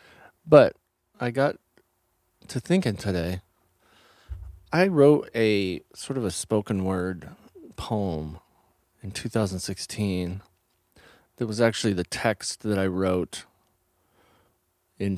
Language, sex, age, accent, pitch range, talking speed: English, male, 30-49, American, 85-105 Hz, 105 wpm